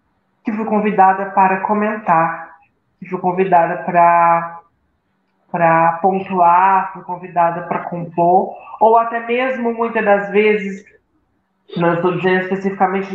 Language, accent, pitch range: Portuguese, Brazilian, 180-225 Hz